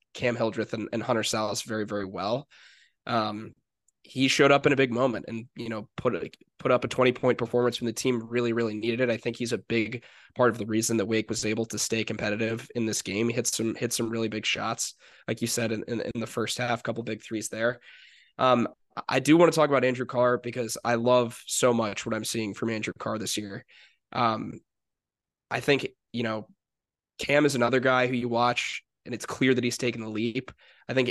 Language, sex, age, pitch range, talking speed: English, male, 10-29, 115-125 Hz, 230 wpm